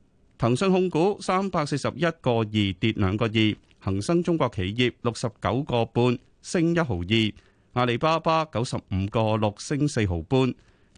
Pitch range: 105-160 Hz